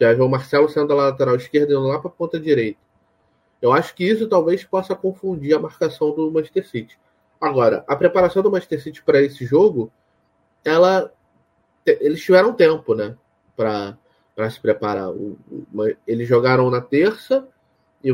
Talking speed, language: 160 wpm, Portuguese